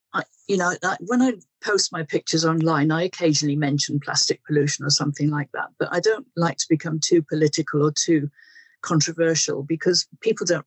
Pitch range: 150-175 Hz